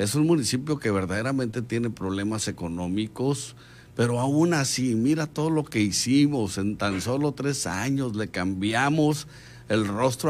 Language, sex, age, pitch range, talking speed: Spanish, male, 50-69, 100-135 Hz, 145 wpm